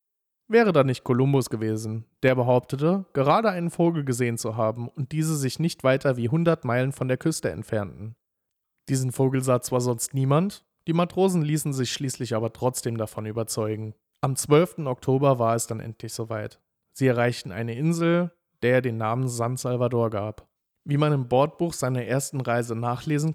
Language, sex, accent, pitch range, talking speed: English, male, German, 120-150 Hz, 170 wpm